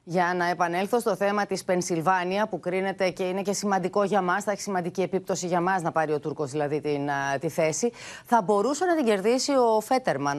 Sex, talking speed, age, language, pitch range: female, 215 wpm, 30-49, Greek, 160-230 Hz